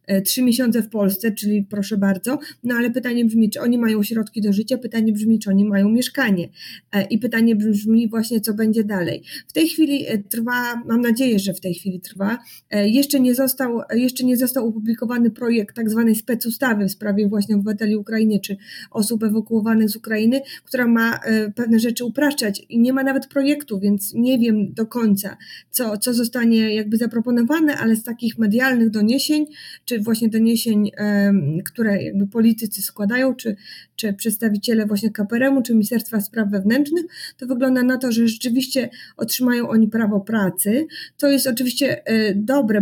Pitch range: 220-255 Hz